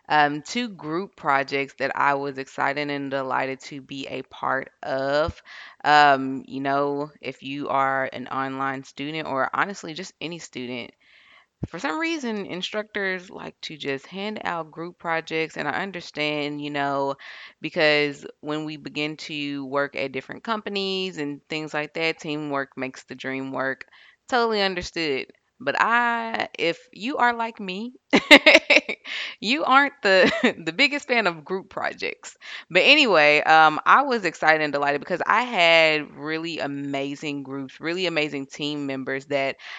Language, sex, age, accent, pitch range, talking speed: English, female, 20-39, American, 140-175 Hz, 150 wpm